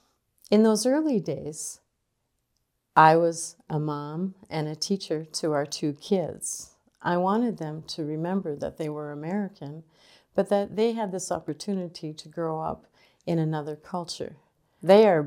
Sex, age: female, 50-69